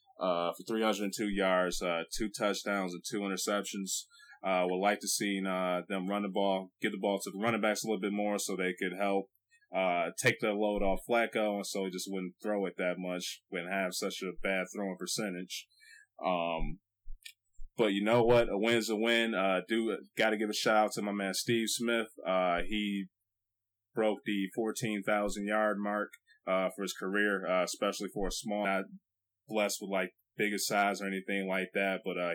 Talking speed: 205 wpm